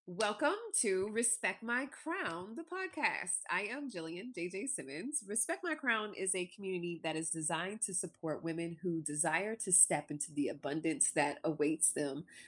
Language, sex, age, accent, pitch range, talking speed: English, female, 30-49, American, 165-225 Hz, 165 wpm